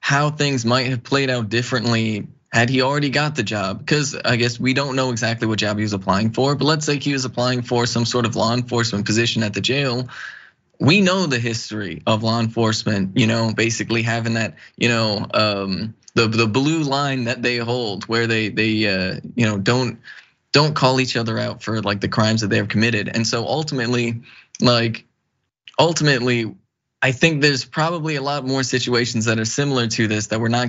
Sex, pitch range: male, 110-130 Hz